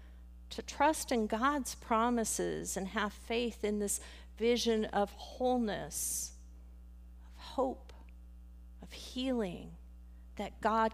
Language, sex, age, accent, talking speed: English, female, 50-69, American, 105 wpm